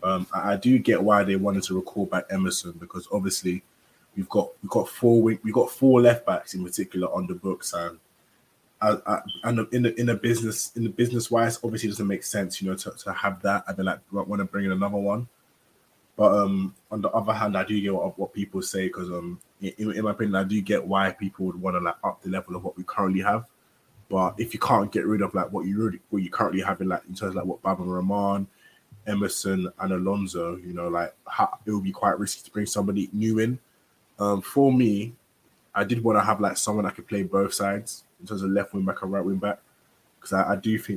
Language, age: English, 20-39